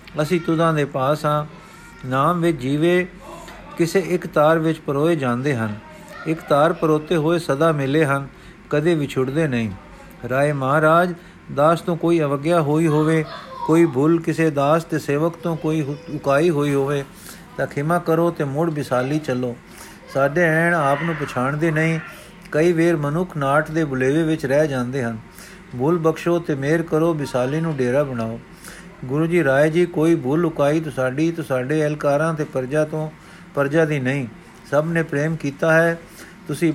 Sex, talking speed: male, 160 wpm